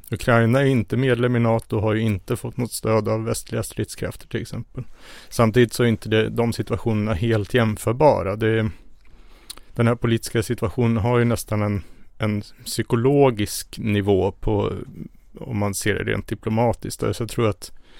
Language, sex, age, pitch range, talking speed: Swedish, male, 30-49, 105-115 Hz, 165 wpm